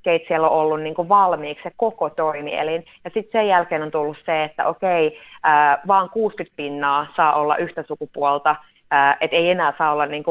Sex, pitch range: female, 155-180 Hz